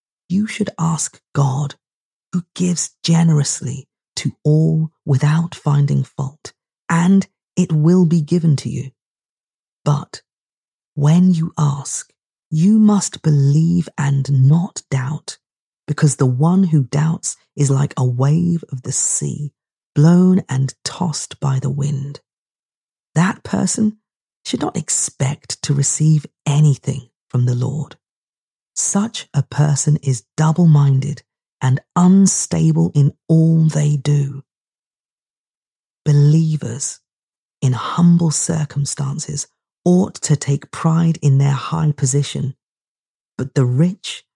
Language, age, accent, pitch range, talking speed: English, 40-59, British, 135-165 Hz, 115 wpm